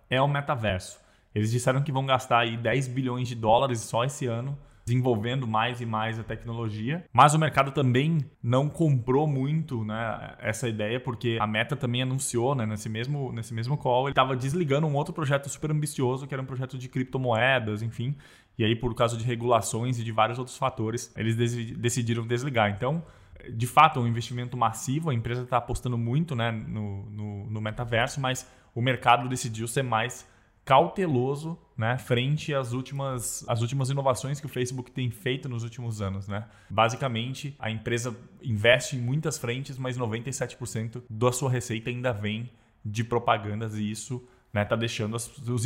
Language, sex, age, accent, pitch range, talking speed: Portuguese, male, 20-39, Brazilian, 115-135 Hz, 175 wpm